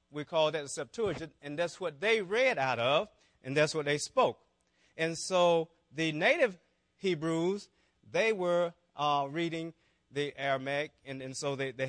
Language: English